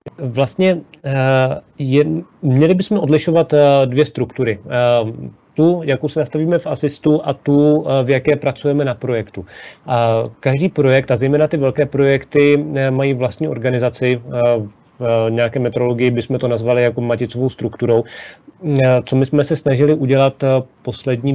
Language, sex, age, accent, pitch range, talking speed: Czech, male, 40-59, native, 115-140 Hz, 125 wpm